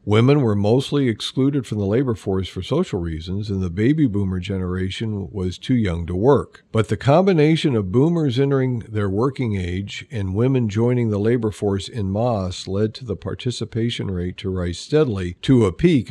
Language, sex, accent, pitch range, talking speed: English, male, American, 95-125 Hz, 185 wpm